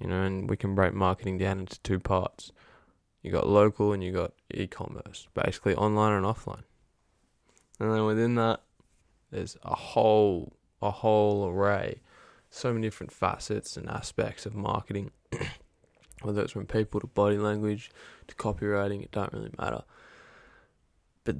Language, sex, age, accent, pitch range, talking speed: English, male, 10-29, Australian, 100-110 Hz, 150 wpm